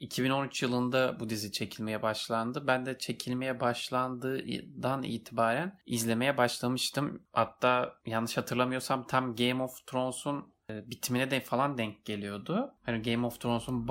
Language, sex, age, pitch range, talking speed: Turkish, male, 30-49, 110-130 Hz, 125 wpm